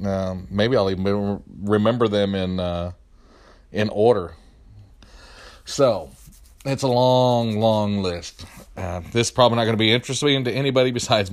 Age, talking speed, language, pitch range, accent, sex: 40-59, 150 wpm, English, 85-105 Hz, American, male